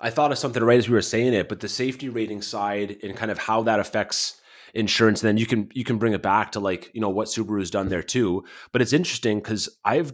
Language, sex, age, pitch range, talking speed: English, male, 30-49, 100-125 Hz, 260 wpm